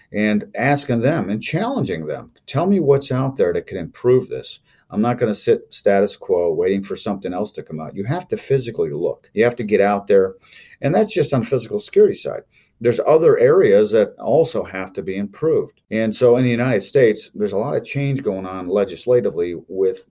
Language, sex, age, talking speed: English, male, 50-69, 210 wpm